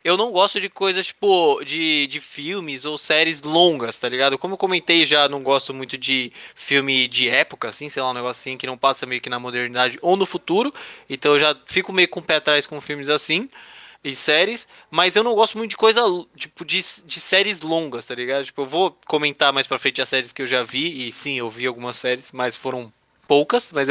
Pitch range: 140-220 Hz